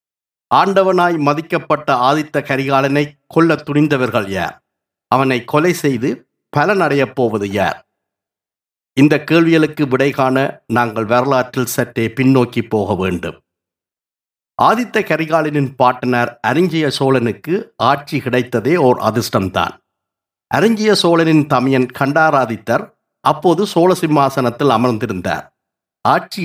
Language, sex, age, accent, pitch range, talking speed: Tamil, male, 50-69, native, 125-160 Hz, 90 wpm